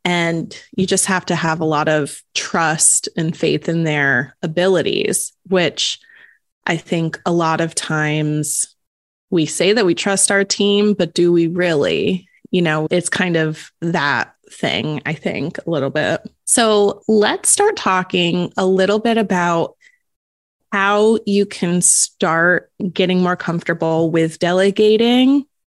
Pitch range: 165-200 Hz